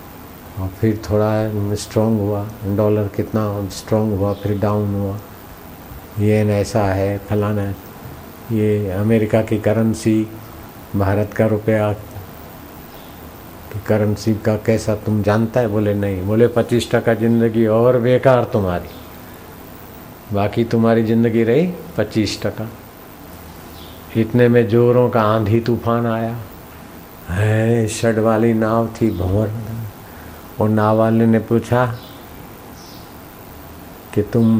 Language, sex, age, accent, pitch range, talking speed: Hindi, male, 50-69, native, 100-115 Hz, 115 wpm